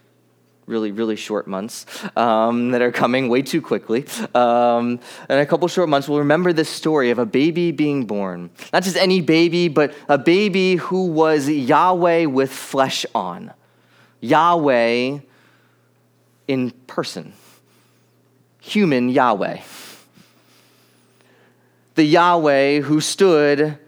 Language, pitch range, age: English, 135-190 Hz, 20-39